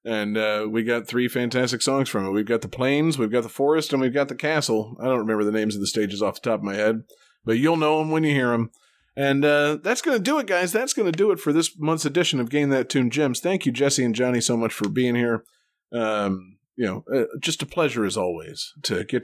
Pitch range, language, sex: 115-155 Hz, English, male